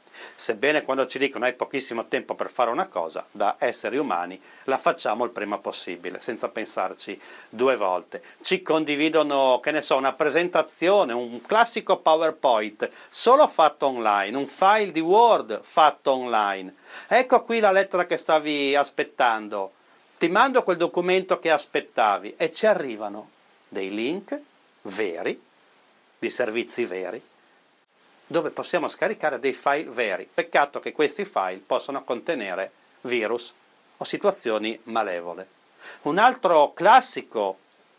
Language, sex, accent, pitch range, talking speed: Italian, male, native, 135-195 Hz, 130 wpm